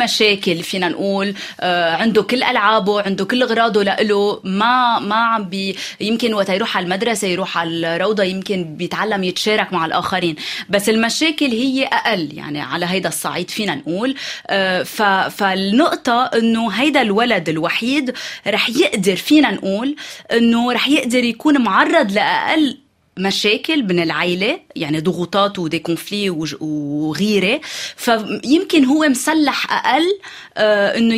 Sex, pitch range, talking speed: female, 185-235 Hz, 125 wpm